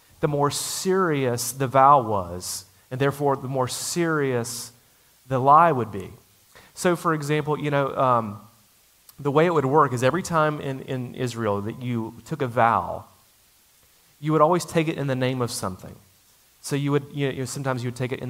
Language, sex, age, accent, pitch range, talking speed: English, male, 30-49, American, 115-150 Hz, 190 wpm